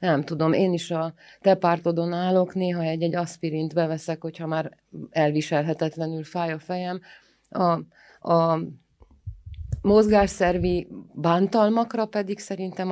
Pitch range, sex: 150-180 Hz, female